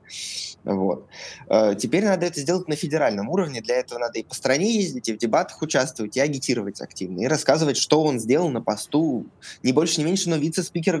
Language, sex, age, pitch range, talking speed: Russian, male, 20-39, 125-170 Hz, 190 wpm